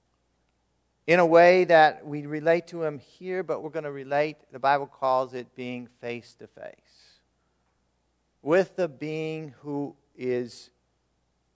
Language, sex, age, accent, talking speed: English, male, 50-69, American, 130 wpm